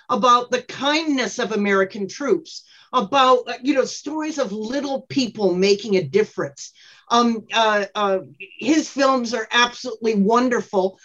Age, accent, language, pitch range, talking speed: 50-69, American, English, 195-250 Hz, 130 wpm